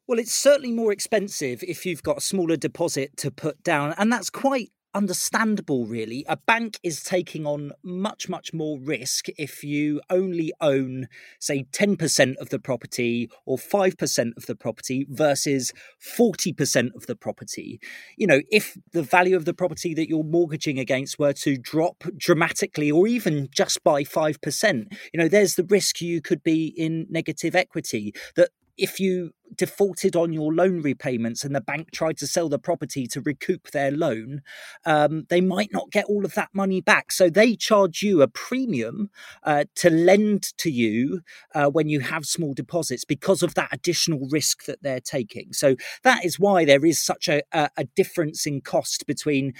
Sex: male